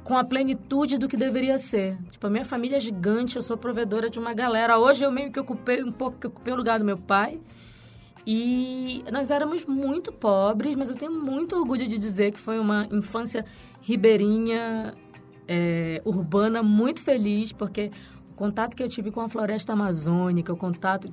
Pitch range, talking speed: 190-230 Hz, 185 wpm